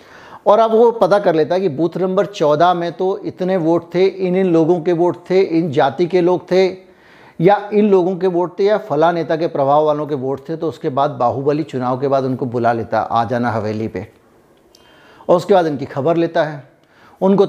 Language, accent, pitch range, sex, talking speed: Hindi, native, 140-180 Hz, male, 225 wpm